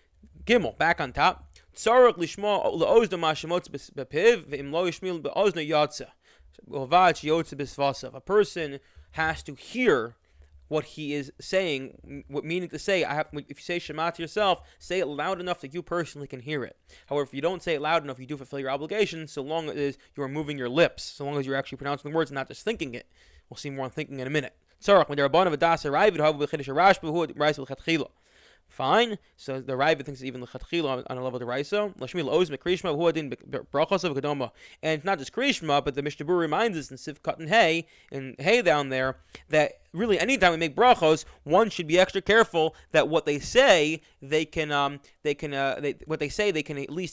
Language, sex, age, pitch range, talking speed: English, male, 20-39, 135-170 Hz, 165 wpm